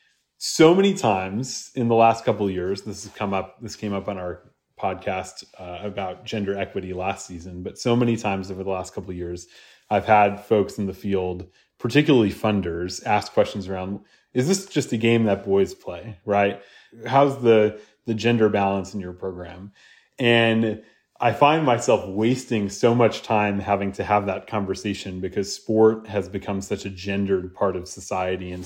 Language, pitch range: English, 95-110 Hz